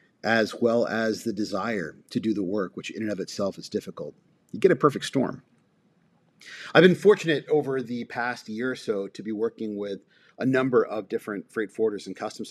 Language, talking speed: English, 200 wpm